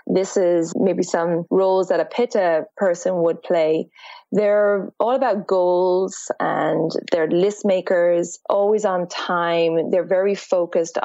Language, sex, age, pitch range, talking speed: English, female, 20-39, 180-220 Hz, 135 wpm